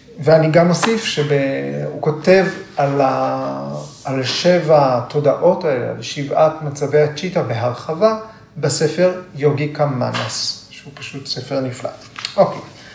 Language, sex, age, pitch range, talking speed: Hebrew, male, 40-59, 125-160 Hz, 115 wpm